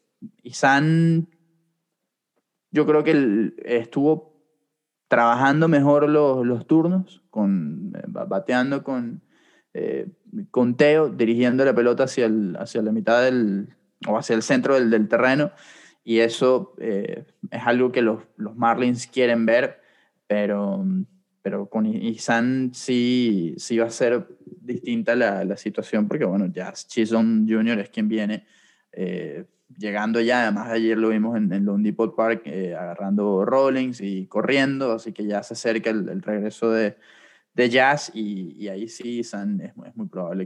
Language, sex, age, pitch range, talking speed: English, male, 20-39, 110-150 Hz, 155 wpm